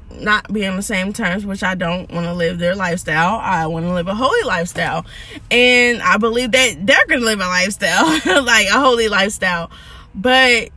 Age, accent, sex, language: 20-39, American, female, English